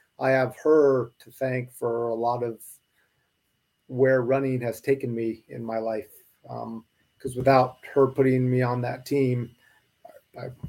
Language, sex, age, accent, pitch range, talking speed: English, male, 30-49, American, 120-140 Hz, 150 wpm